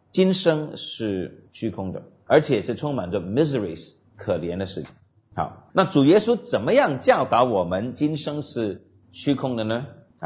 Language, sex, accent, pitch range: Chinese, male, native, 105-160 Hz